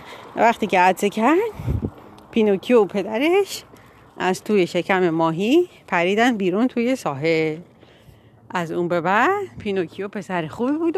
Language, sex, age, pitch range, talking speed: Persian, female, 40-59, 180-240 Hz, 125 wpm